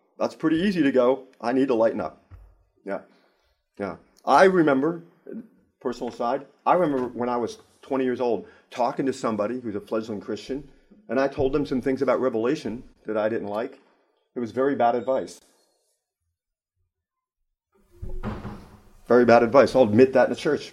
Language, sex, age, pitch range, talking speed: English, male, 40-59, 110-135 Hz, 165 wpm